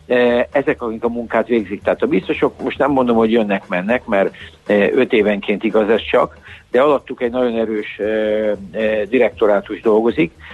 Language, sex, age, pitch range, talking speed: Hungarian, male, 60-79, 105-125 Hz, 150 wpm